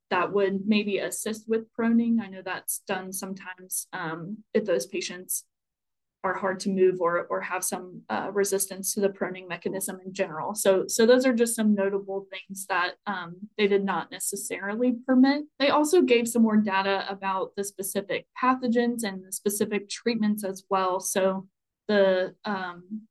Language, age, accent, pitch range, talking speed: English, 20-39, American, 190-215 Hz, 170 wpm